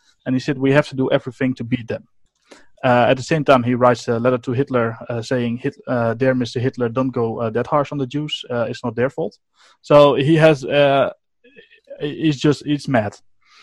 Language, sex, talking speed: English, male, 220 wpm